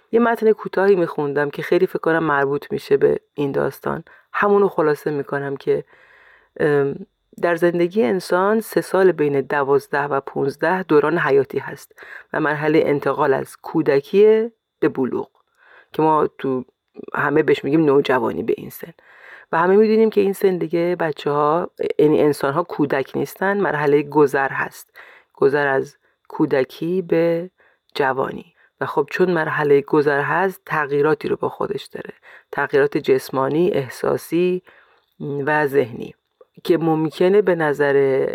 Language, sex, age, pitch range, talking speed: Persian, female, 30-49, 150-205 Hz, 135 wpm